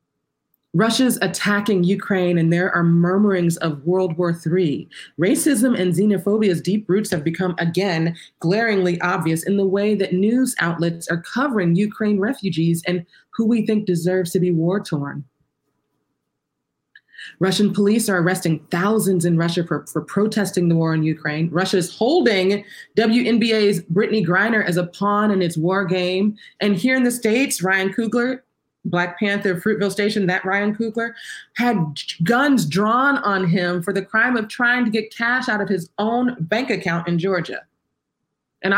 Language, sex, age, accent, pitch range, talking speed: English, female, 30-49, American, 175-215 Hz, 160 wpm